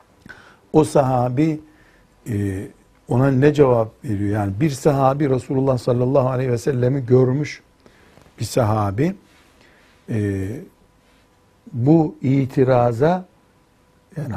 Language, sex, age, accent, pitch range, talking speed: Turkish, male, 60-79, native, 120-150 Hz, 85 wpm